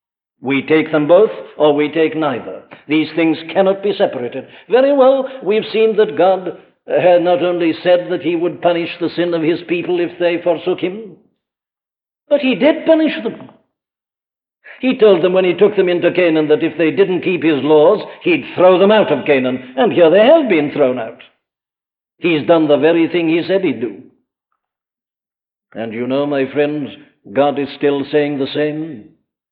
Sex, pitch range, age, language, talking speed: male, 150-200 Hz, 60-79, English, 185 wpm